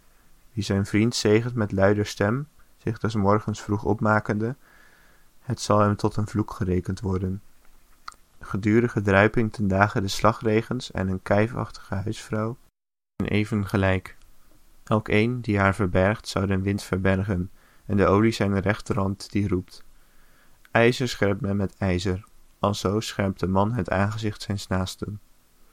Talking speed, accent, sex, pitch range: 145 wpm, Dutch, male, 95-105 Hz